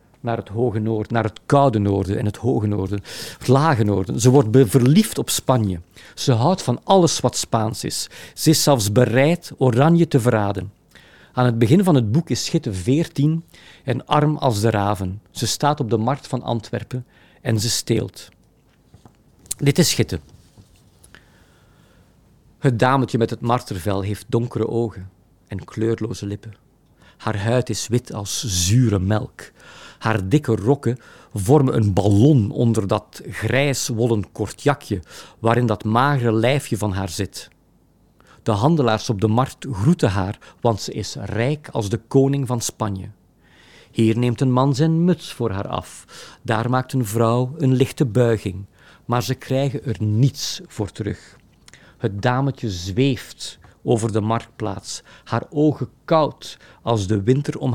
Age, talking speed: 50-69, 155 wpm